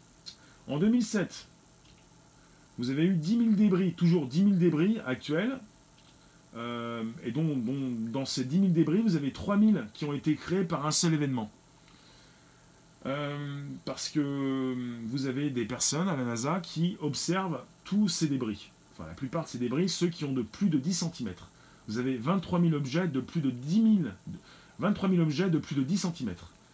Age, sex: 30-49, male